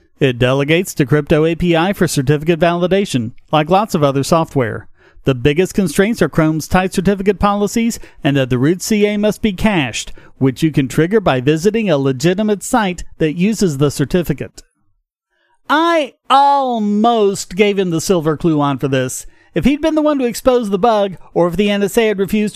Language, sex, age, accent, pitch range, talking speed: English, male, 40-59, American, 165-245 Hz, 180 wpm